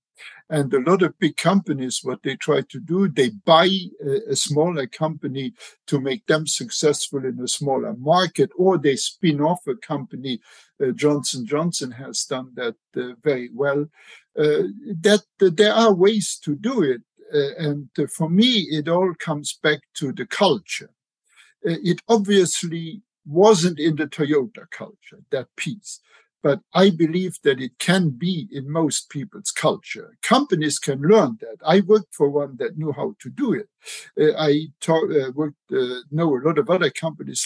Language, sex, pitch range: English, male, 140-190 Hz